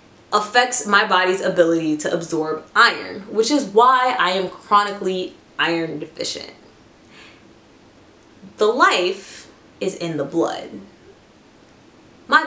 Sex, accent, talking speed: female, American, 105 wpm